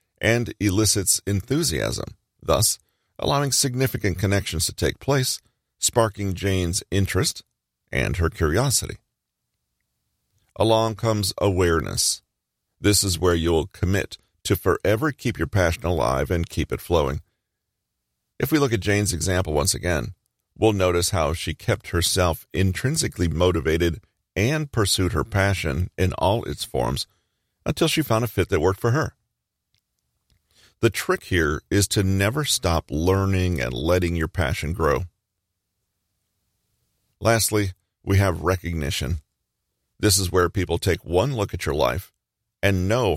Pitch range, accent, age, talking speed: 85-110 Hz, American, 40-59, 135 wpm